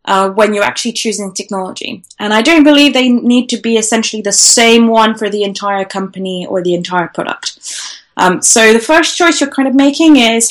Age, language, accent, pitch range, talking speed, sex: 10-29, English, British, 200-245 Hz, 205 wpm, female